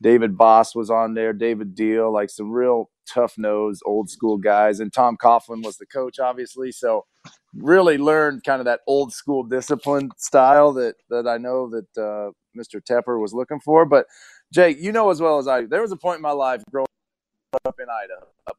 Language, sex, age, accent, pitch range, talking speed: English, male, 40-59, American, 115-145 Hz, 195 wpm